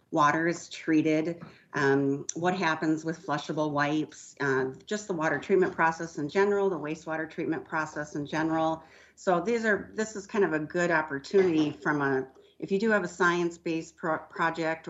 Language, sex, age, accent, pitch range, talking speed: English, female, 40-59, American, 140-170 Hz, 170 wpm